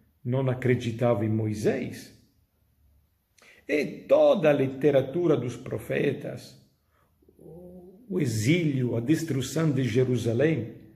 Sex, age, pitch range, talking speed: male, 50-69, 115-160 Hz, 90 wpm